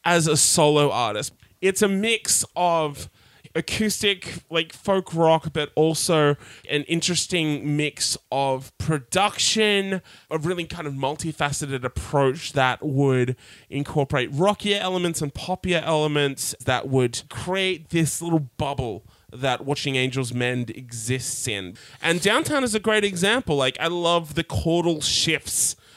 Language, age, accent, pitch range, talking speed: English, 20-39, Australian, 135-170 Hz, 130 wpm